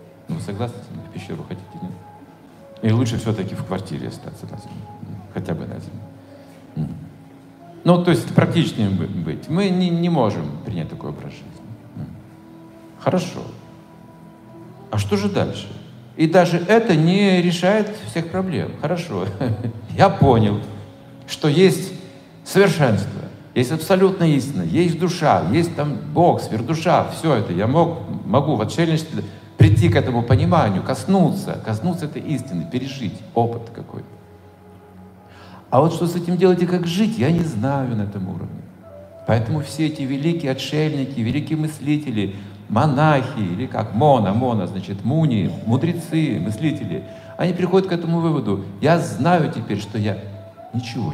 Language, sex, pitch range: Russian, male, 110-170 Hz